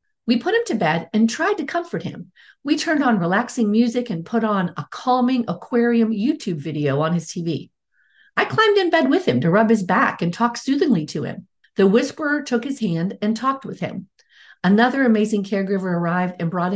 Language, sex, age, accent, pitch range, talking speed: English, female, 50-69, American, 180-260 Hz, 200 wpm